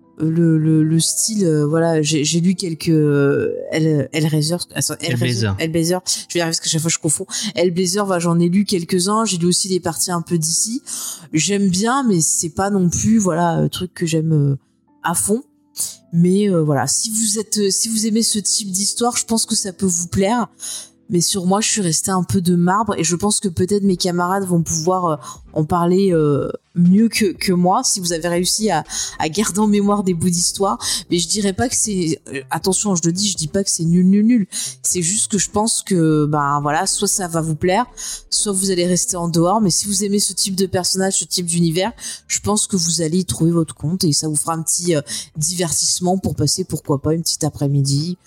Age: 20-39